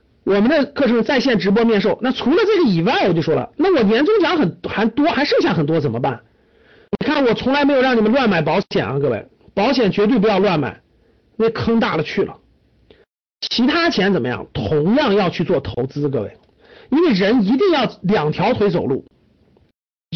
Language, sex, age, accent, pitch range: Chinese, male, 50-69, native, 195-285 Hz